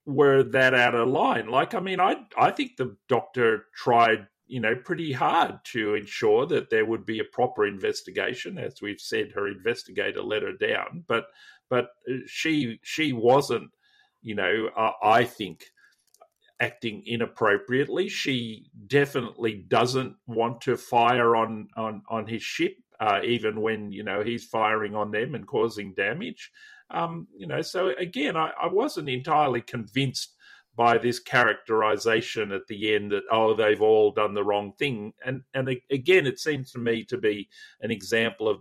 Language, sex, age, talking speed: English, male, 50-69, 165 wpm